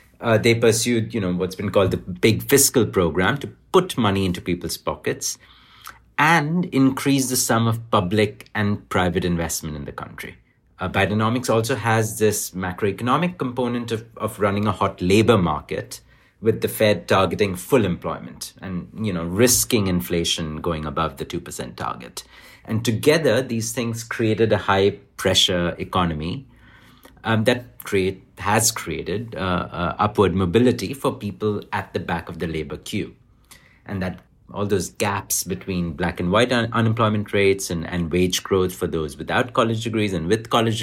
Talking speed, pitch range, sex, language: 160 wpm, 90-115 Hz, male, English